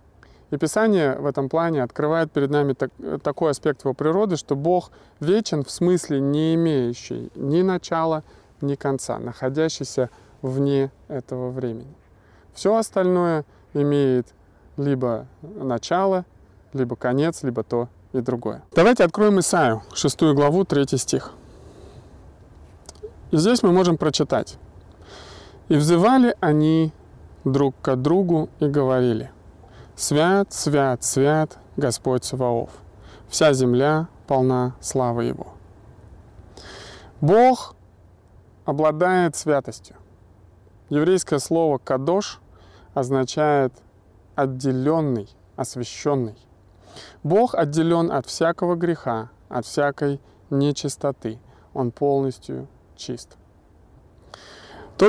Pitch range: 120-160 Hz